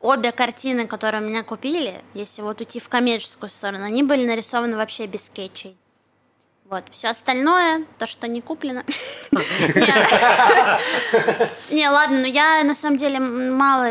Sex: female